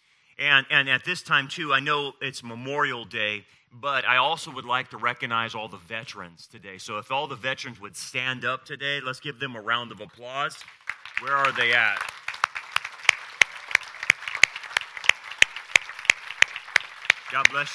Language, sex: English, male